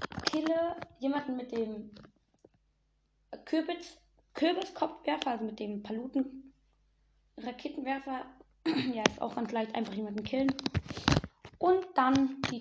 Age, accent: 20-39, German